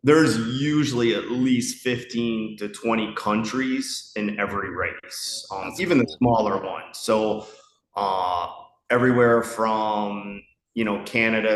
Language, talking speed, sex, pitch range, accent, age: English, 120 wpm, male, 105-125 Hz, American, 30-49